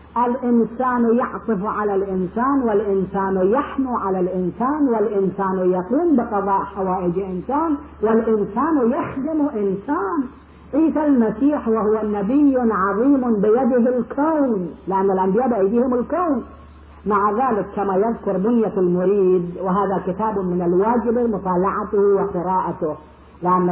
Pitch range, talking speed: 190-255 Hz, 100 wpm